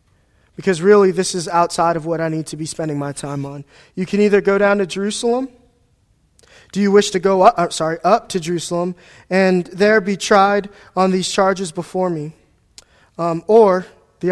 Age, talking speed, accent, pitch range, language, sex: 20-39, 190 wpm, American, 160-200 Hz, English, male